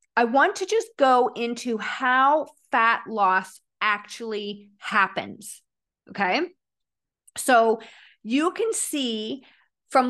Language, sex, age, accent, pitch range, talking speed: English, female, 40-59, American, 215-275 Hz, 100 wpm